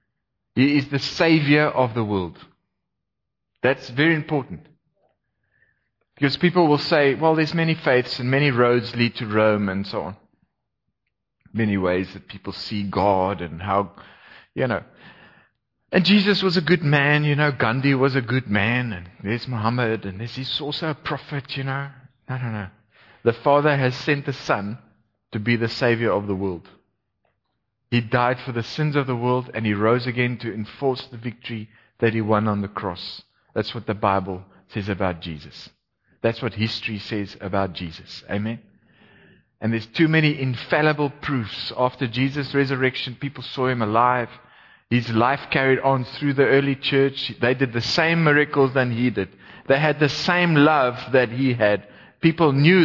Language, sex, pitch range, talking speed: English, male, 110-140 Hz, 170 wpm